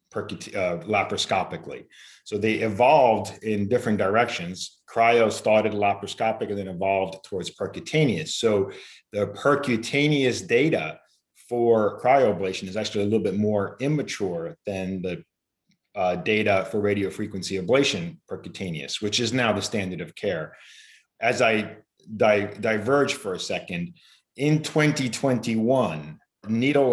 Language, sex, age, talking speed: English, male, 40-59, 115 wpm